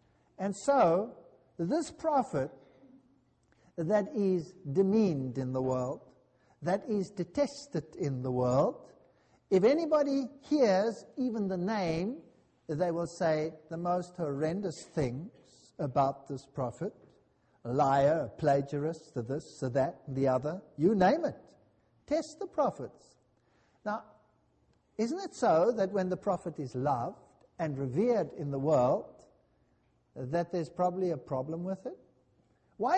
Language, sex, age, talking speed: English, male, 60-79, 120 wpm